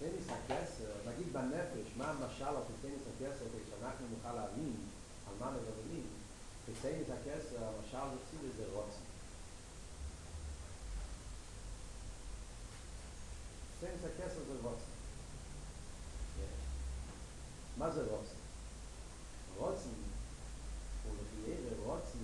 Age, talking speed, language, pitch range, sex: 40-59, 100 wpm, Hebrew, 95-140 Hz, male